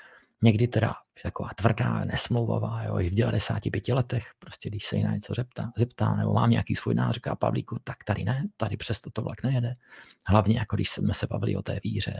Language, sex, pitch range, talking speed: Czech, male, 105-125 Hz, 190 wpm